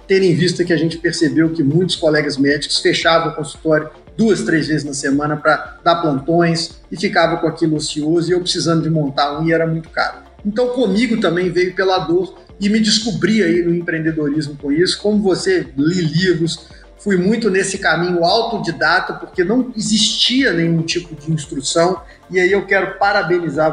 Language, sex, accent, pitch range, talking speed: Portuguese, male, Brazilian, 155-180 Hz, 180 wpm